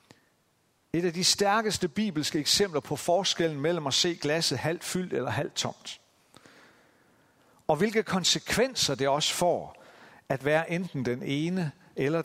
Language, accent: Danish, native